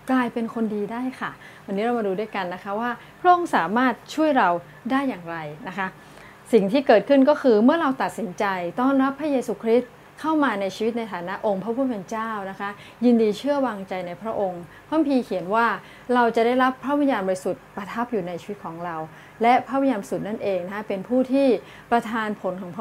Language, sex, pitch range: Thai, female, 185-245 Hz